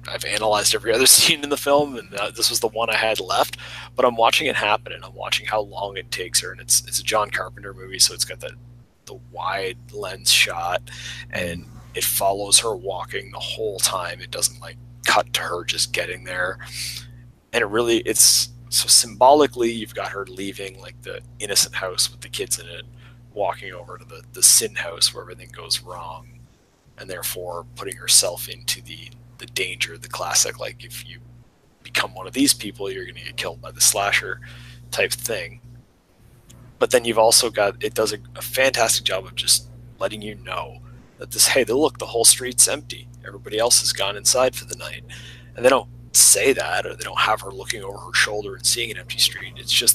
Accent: American